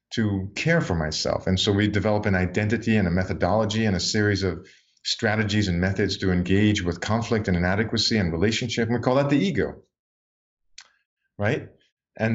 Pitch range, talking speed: 95-120 Hz, 175 wpm